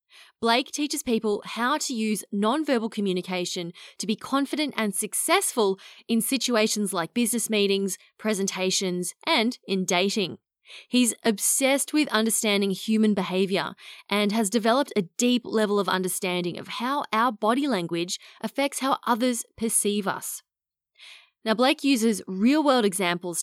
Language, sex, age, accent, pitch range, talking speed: English, female, 20-39, Australian, 185-245 Hz, 130 wpm